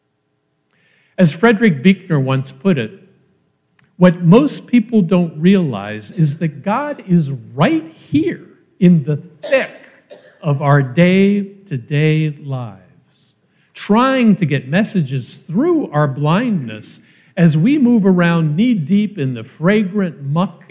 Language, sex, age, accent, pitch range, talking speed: English, male, 50-69, American, 130-185 Hz, 115 wpm